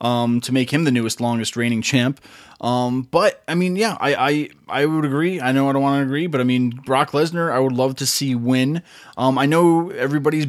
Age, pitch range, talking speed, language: 20-39, 125-150 Hz, 235 wpm, English